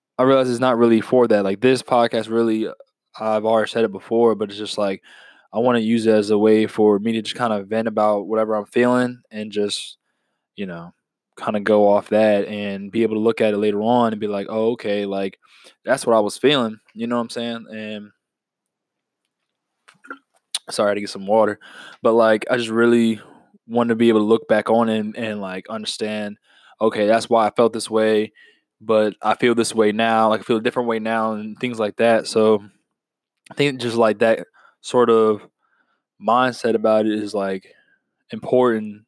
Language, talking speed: English, 210 wpm